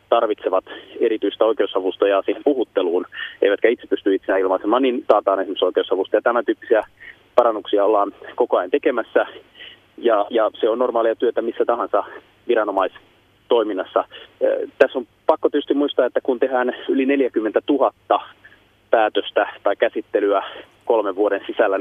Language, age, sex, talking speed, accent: Finnish, 30-49, male, 130 wpm, native